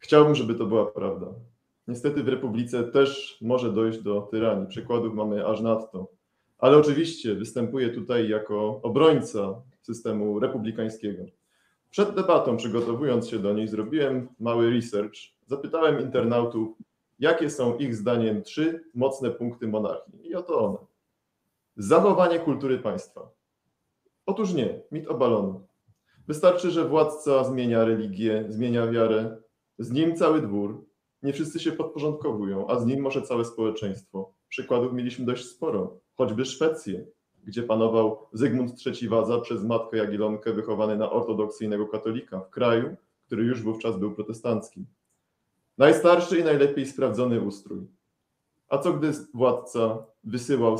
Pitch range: 110-135 Hz